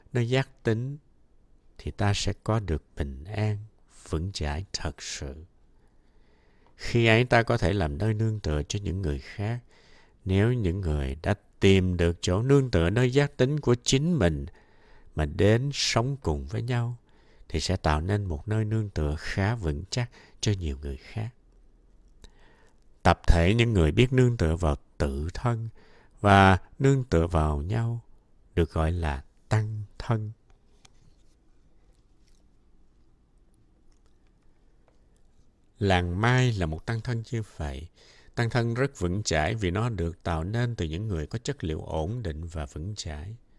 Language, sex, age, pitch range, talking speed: Vietnamese, male, 60-79, 80-115 Hz, 150 wpm